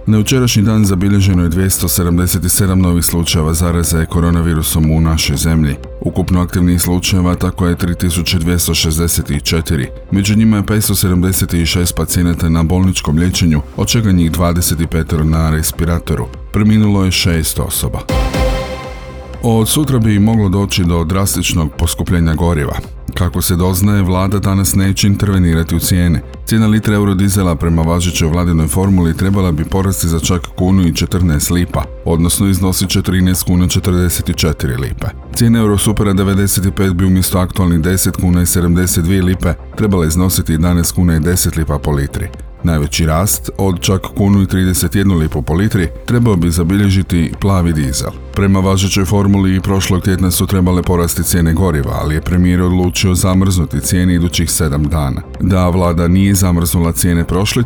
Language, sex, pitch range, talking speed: Croatian, male, 85-95 Hz, 145 wpm